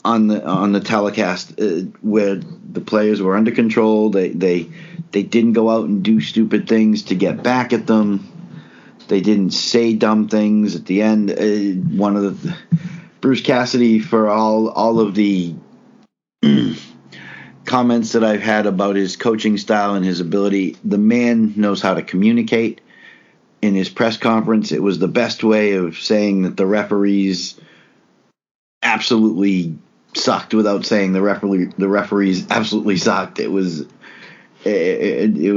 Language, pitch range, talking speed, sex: English, 100-115 Hz, 155 wpm, male